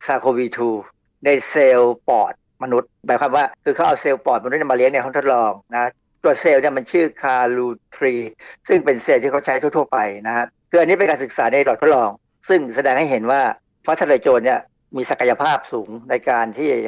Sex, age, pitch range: male, 60-79, 125-170 Hz